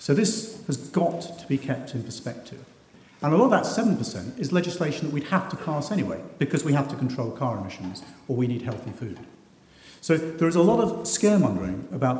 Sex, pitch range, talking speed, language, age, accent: male, 125-165 Hz, 210 wpm, English, 50-69, British